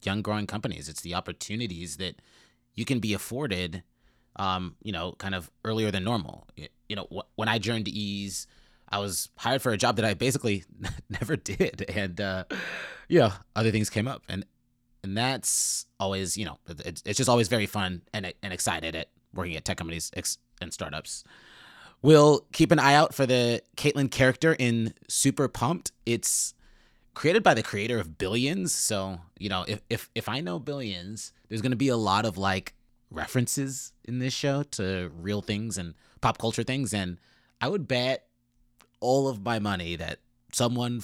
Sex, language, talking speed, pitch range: male, English, 175 wpm, 95-120 Hz